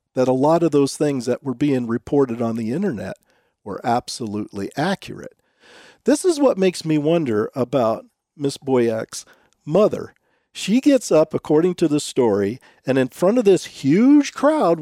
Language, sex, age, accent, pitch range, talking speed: English, male, 50-69, American, 135-215 Hz, 160 wpm